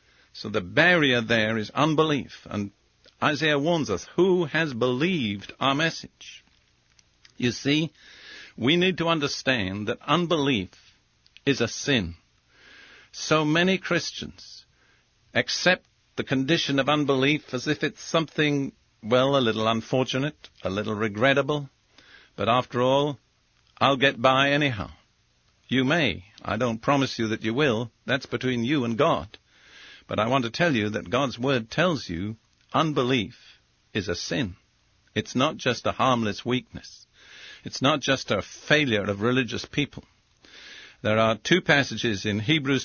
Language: English